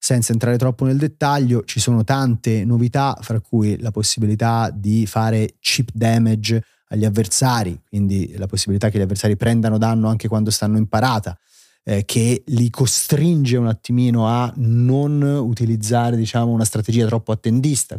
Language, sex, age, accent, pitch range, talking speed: Italian, male, 30-49, native, 105-125 Hz, 155 wpm